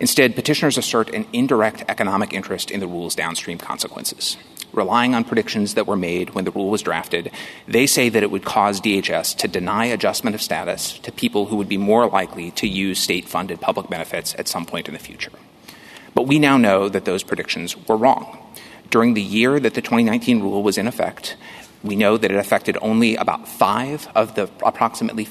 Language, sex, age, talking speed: English, male, 30-49, 195 wpm